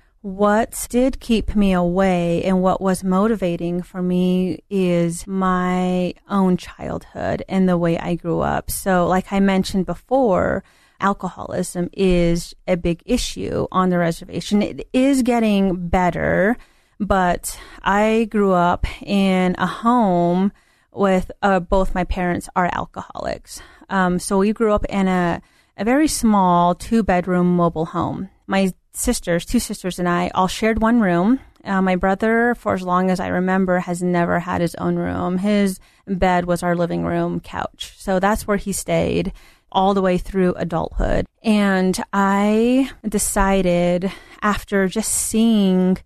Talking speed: 145 wpm